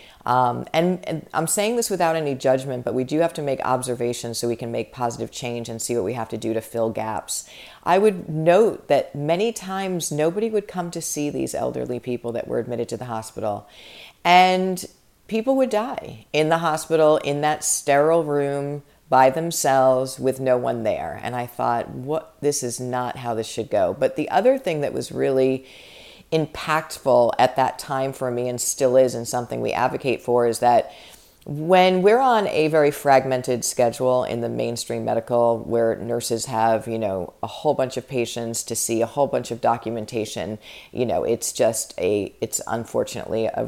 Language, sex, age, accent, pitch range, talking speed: English, female, 40-59, American, 115-155 Hz, 190 wpm